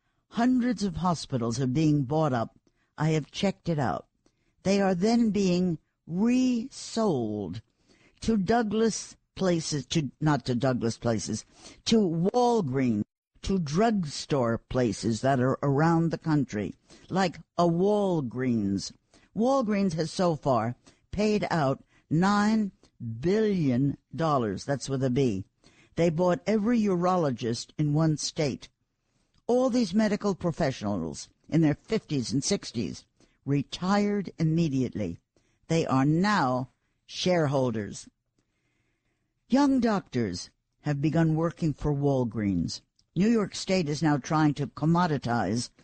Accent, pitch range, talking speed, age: American, 125-185 Hz, 115 wpm, 60-79